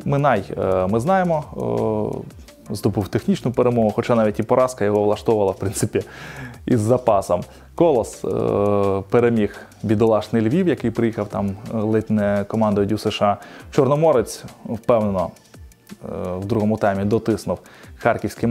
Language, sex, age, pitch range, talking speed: Ukrainian, male, 20-39, 105-125 Hz, 110 wpm